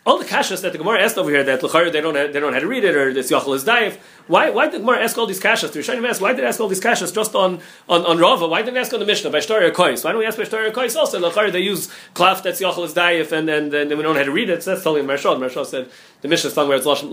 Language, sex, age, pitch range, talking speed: English, male, 30-49, 150-195 Hz, 320 wpm